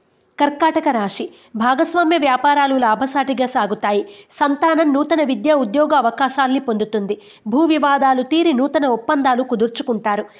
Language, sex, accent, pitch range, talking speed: Telugu, female, native, 240-295 Hz, 105 wpm